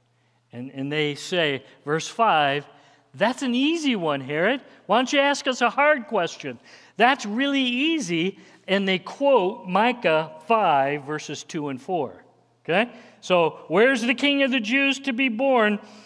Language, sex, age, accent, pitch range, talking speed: English, male, 50-69, American, 150-245 Hz, 155 wpm